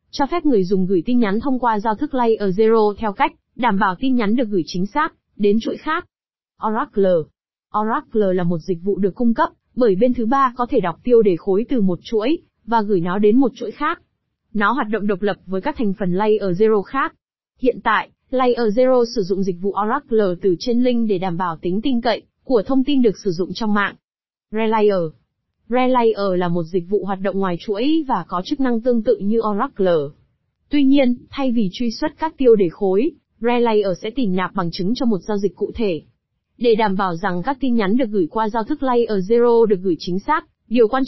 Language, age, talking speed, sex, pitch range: Vietnamese, 20-39, 230 wpm, female, 195-245 Hz